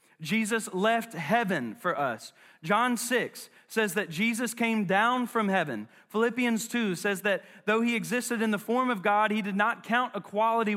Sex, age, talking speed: male, 30-49, 175 wpm